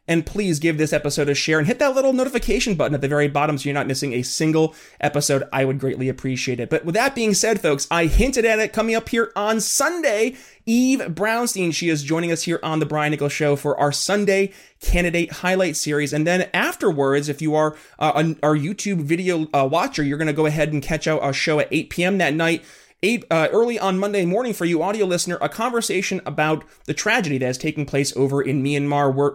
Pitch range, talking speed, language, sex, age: 145-180 Hz, 230 wpm, English, male, 30-49